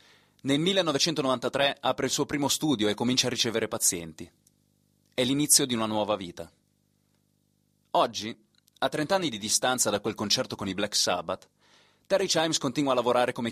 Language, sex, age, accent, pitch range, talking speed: Italian, male, 30-49, native, 105-145 Hz, 165 wpm